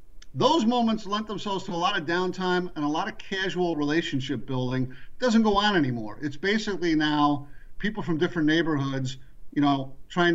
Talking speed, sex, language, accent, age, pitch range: 180 wpm, male, English, American, 50-69, 140-180 Hz